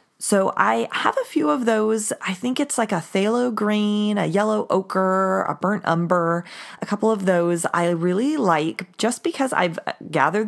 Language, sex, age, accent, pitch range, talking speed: English, female, 30-49, American, 145-200 Hz, 180 wpm